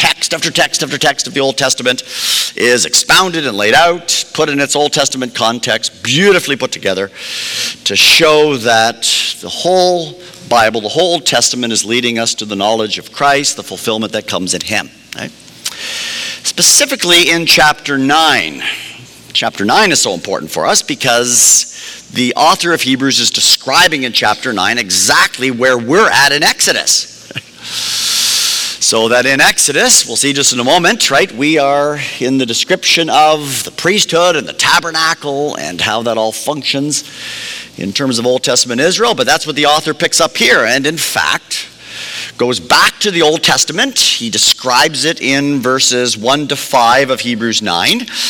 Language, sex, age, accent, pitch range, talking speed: English, male, 50-69, American, 120-155 Hz, 165 wpm